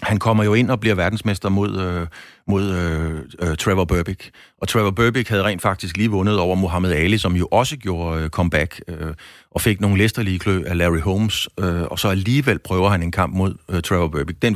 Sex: male